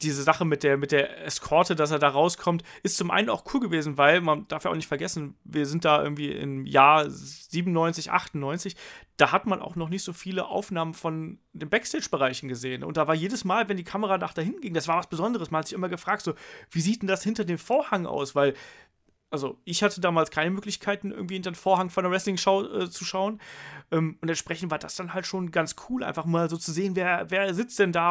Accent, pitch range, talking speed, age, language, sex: German, 150-190 Hz, 235 wpm, 30-49, German, male